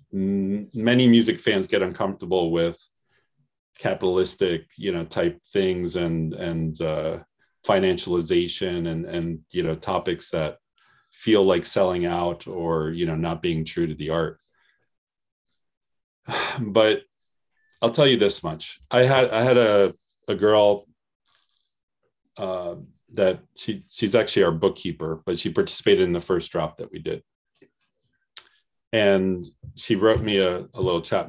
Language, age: English, 40-59